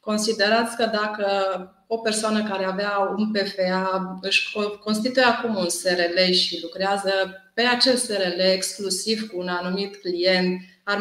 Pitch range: 185-205 Hz